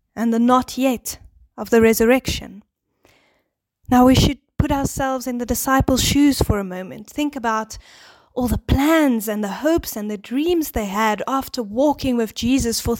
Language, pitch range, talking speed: English, 205-255 Hz, 170 wpm